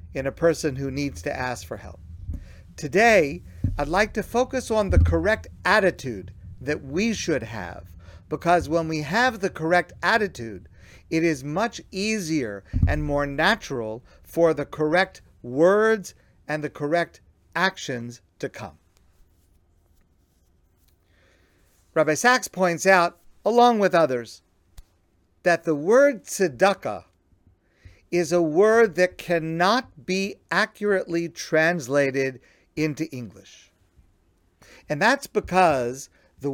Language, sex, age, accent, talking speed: English, male, 50-69, American, 115 wpm